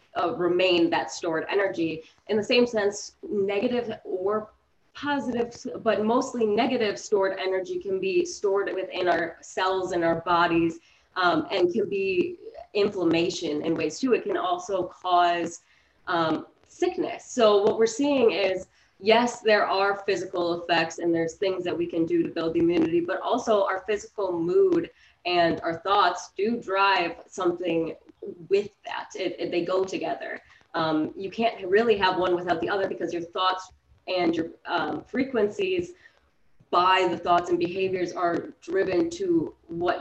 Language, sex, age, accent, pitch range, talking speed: English, female, 20-39, American, 170-240 Hz, 155 wpm